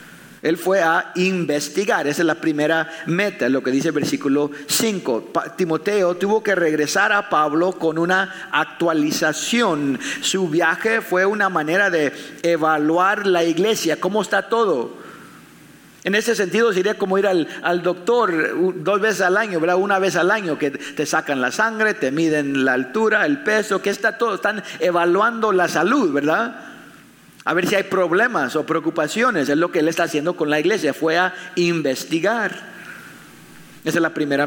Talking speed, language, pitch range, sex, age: 165 wpm, English, 150-195 Hz, male, 50-69